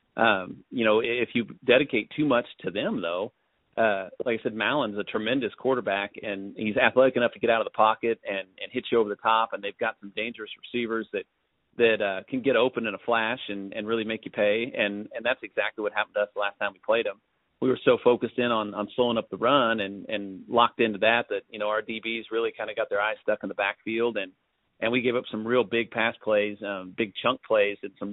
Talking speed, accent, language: 250 wpm, American, English